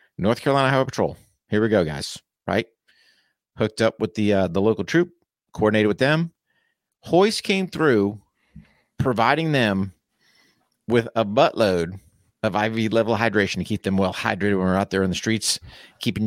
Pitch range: 105-135 Hz